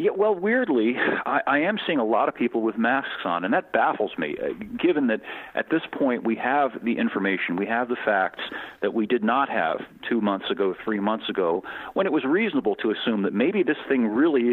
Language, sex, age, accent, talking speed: English, male, 40-59, American, 225 wpm